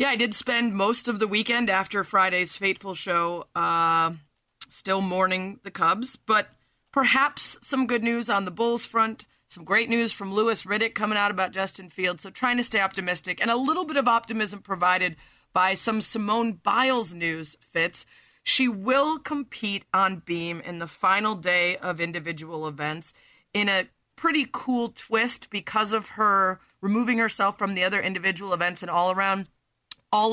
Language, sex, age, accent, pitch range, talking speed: English, female, 30-49, American, 180-225 Hz, 170 wpm